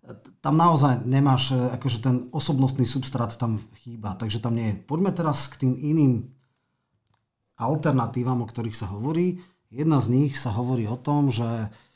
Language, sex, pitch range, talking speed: Slovak, male, 115-145 Hz, 155 wpm